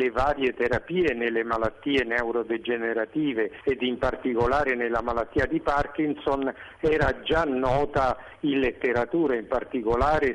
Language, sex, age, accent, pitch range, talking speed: Italian, male, 50-69, native, 125-160 Hz, 115 wpm